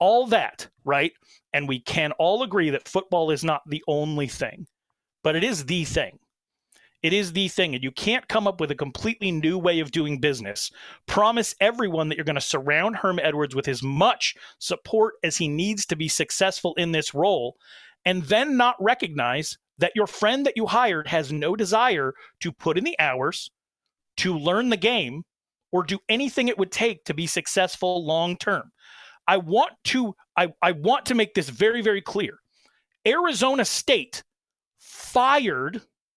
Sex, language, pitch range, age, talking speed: male, English, 160-220 Hz, 30-49, 175 wpm